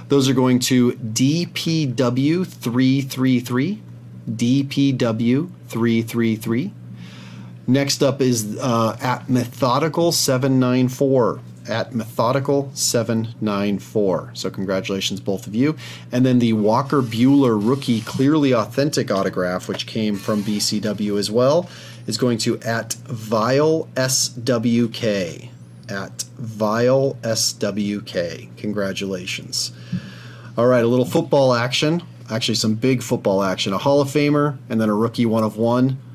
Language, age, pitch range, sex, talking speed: English, 40-59, 105-130 Hz, male, 105 wpm